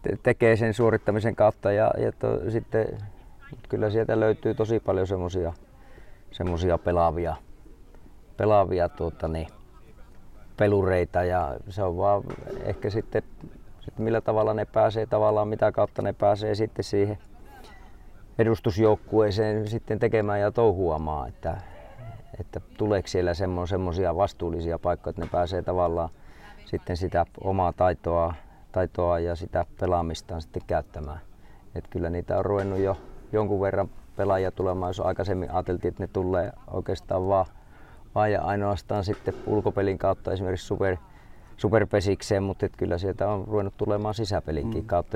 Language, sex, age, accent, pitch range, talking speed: Finnish, male, 30-49, native, 85-105 Hz, 130 wpm